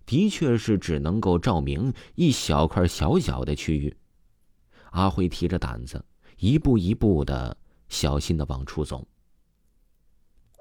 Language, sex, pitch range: Chinese, male, 75-110 Hz